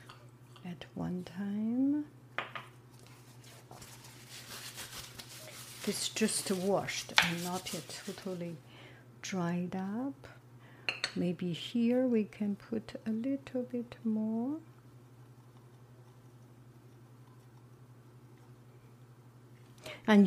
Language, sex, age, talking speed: English, female, 60-79, 65 wpm